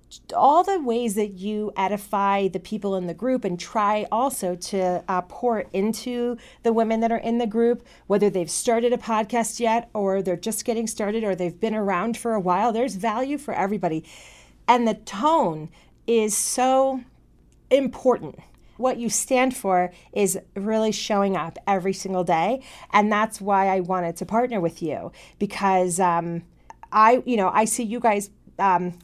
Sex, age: female, 40-59